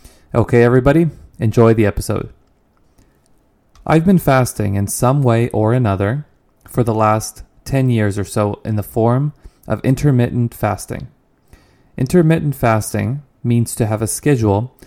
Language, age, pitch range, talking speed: English, 20-39, 105-130 Hz, 135 wpm